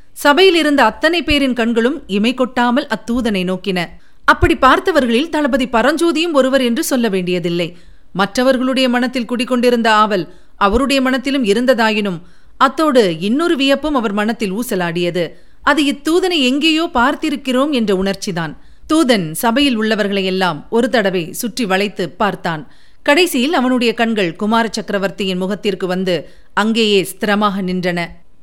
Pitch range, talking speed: 205-260 Hz, 110 wpm